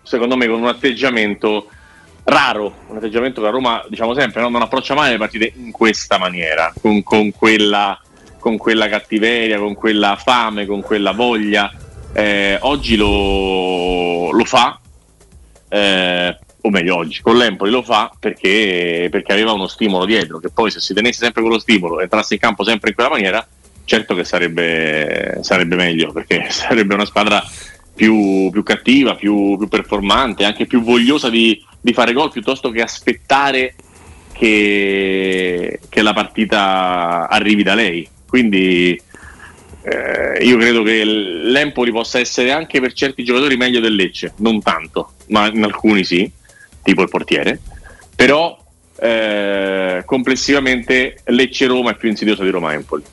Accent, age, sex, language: native, 30-49, male, Italian